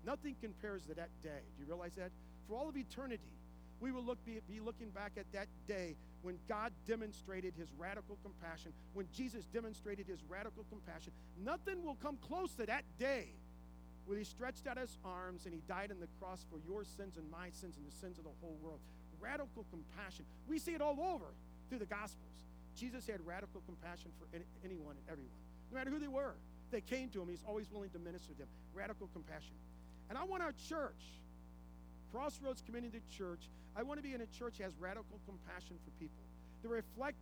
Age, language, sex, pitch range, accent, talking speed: 50-69, English, male, 160-235 Hz, American, 205 wpm